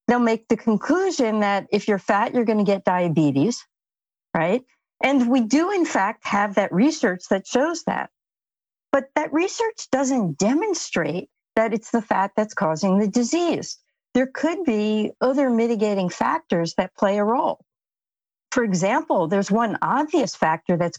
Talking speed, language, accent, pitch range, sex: 155 wpm, English, American, 200-270 Hz, female